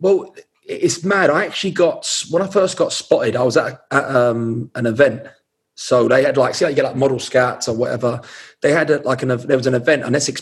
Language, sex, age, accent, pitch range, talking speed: English, male, 30-49, British, 130-175 Hz, 240 wpm